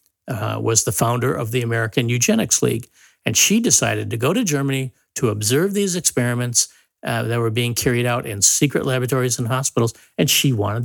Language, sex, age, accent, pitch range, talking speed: English, male, 50-69, American, 110-135 Hz, 190 wpm